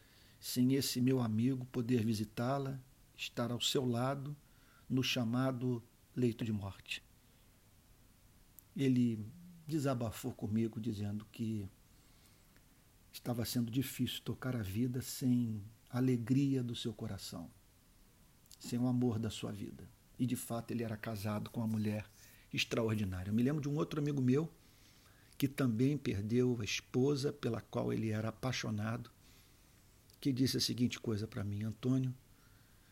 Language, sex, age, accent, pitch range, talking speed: Portuguese, male, 50-69, Brazilian, 110-135 Hz, 135 wpm